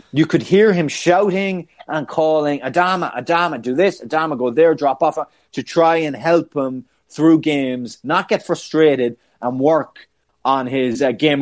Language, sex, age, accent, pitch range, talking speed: English, male, 30-49, Irish, 135-180 Hz, 170 wpm